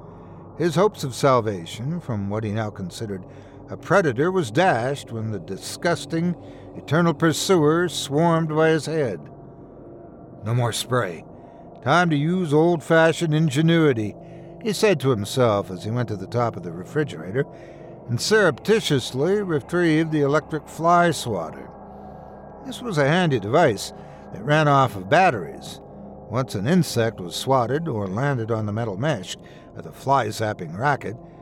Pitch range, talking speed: 110-165 Hz, 145 wpm